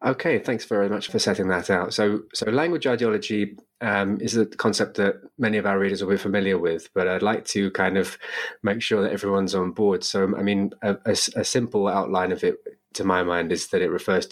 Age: 20-39